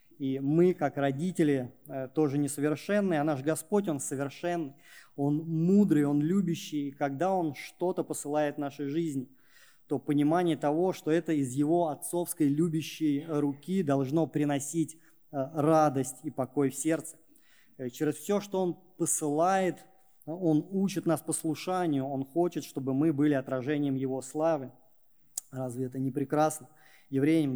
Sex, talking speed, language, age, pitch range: male, 135 wpm, Russian, 20-39, 140-170 Hz